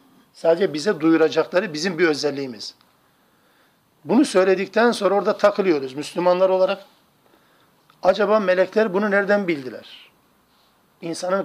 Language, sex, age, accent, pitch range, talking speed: Turkish, male, 50-69, native, 160-195 Hz, 100 wpm